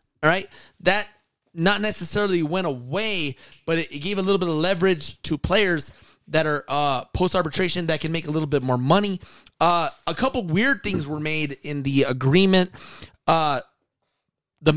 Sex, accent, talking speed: male, American, 165 wpm